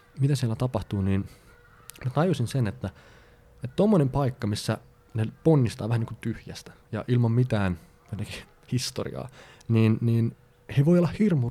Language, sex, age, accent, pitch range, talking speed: Finnish, male, 20-39, native, 105-140 Hz, 145 wpm